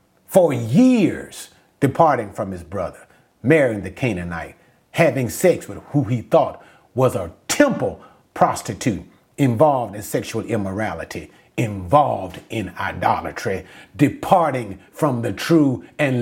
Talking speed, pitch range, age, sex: 115 wpm, 125-195 Hz, 40-59, male